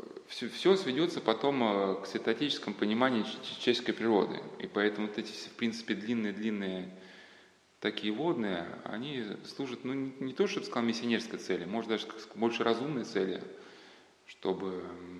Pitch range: 95-115 Hz